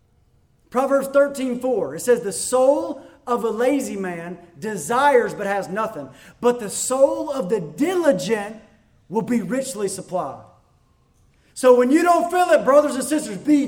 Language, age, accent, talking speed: English, 30-49, American, 155 wpm